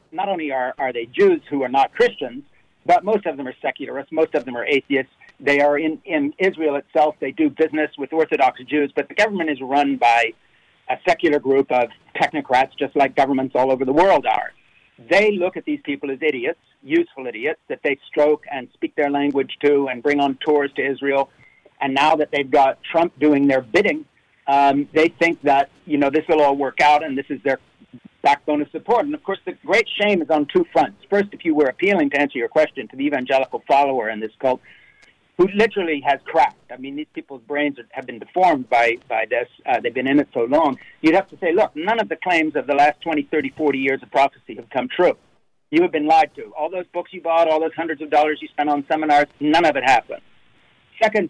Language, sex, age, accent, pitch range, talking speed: English, male, 60-79, American, 135-165 Hz, 230 wpm